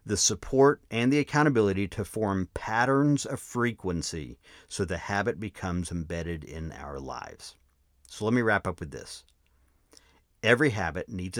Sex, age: male, 50-69